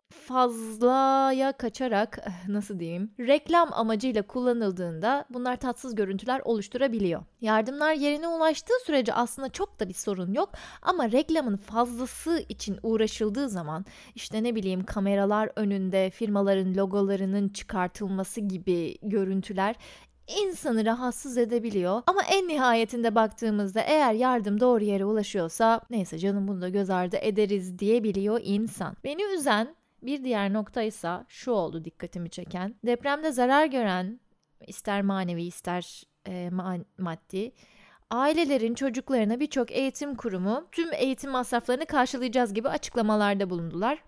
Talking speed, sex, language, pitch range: 120 wpm, female, Turkish, 200-260 Hz